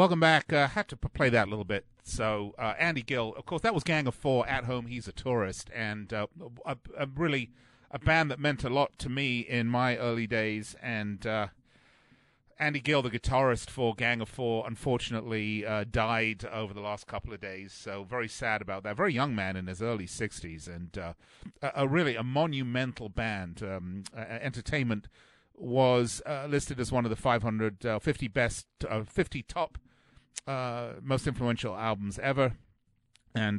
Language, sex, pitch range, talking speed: English, male, 105-130 Hz, 190 wpm